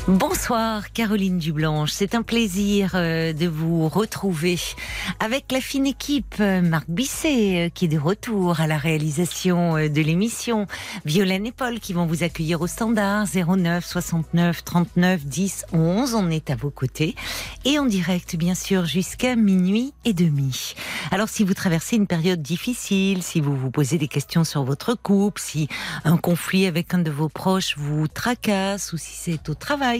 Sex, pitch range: female, 165-210 Hz